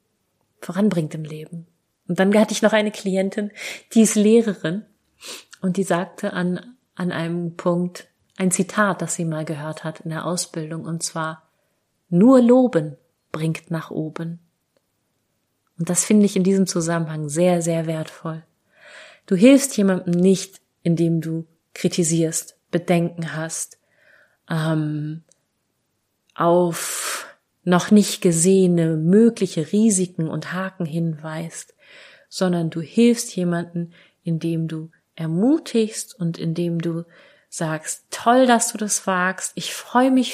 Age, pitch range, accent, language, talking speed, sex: 30-49, 165-200 Hz, German, German, 125 wpm, female